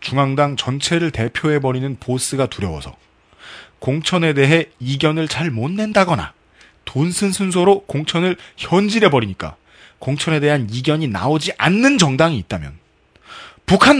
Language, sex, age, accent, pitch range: Korean, male, 30-49, native, 135-200 Hz